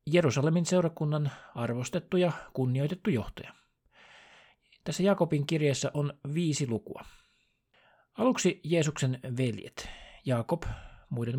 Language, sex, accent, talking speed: Finnish, male, native, 90 wpm